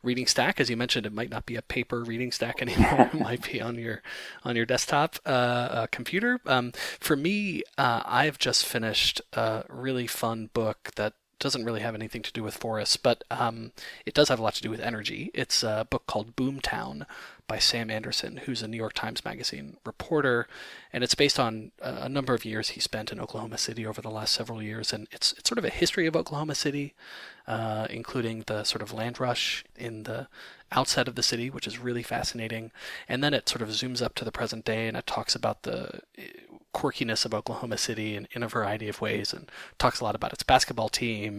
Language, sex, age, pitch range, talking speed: English, male, 30-49, 110-125 Hz, 215 wpm